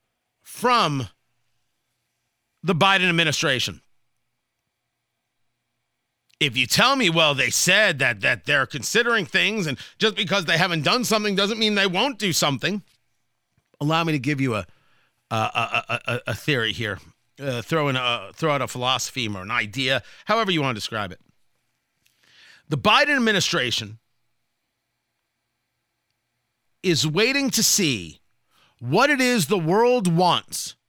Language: English